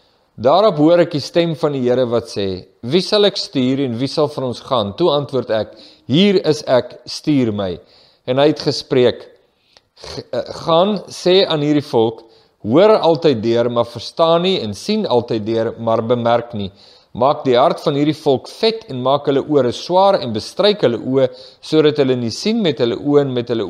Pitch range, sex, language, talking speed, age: 115-165 Hz, male, English, 200 wpm, 50-69